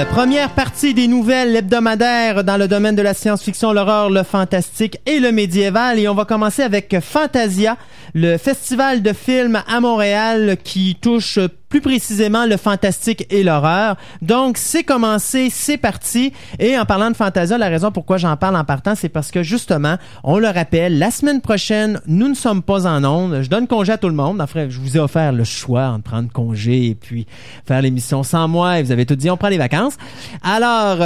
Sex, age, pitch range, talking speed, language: male, 30-49, 140-210 Hz, 205 wpm, French